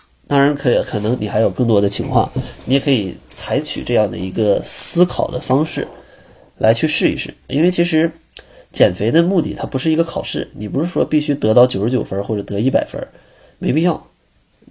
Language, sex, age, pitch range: Chinese, male, 20-39, 105-140 Hz